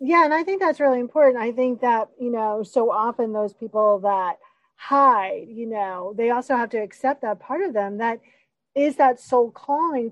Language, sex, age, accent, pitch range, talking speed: English, female, 40-59, American, 225-285 Hz, 200 wpm